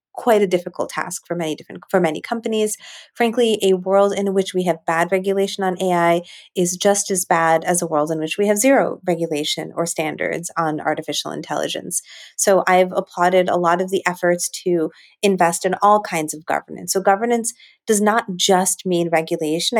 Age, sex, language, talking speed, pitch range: 30-49, female, English, 185 wpm, 160-195 Hz